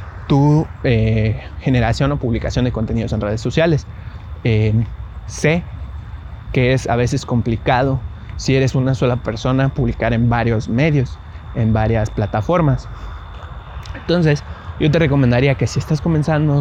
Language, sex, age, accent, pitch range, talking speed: Spanish, male, 30-49, Mexican, 110-145 Hz, 135 wpm